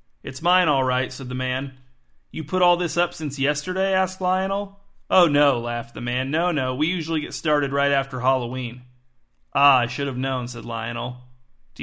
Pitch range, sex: 125-160 Hz, male